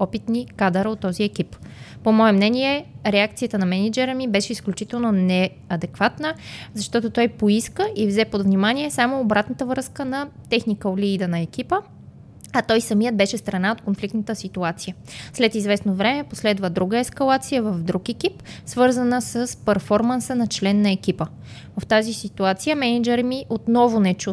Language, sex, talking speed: Bulgarian, female, 155 wpm